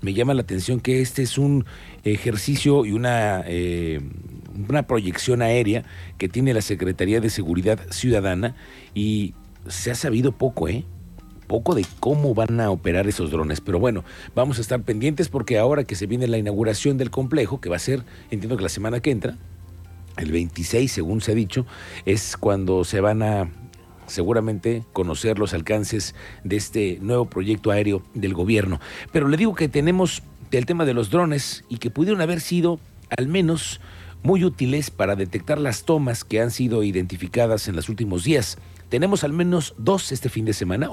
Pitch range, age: 95-130 Hz, 50-69